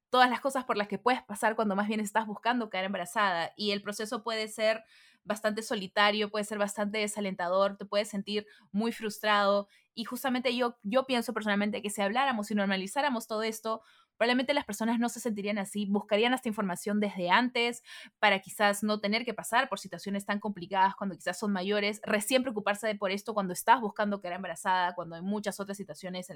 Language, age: Spanish, 20-39